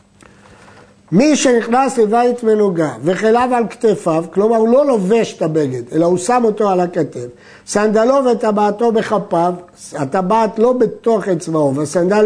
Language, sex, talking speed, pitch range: Hebrew, male, 130 wpm, 170-230 Hz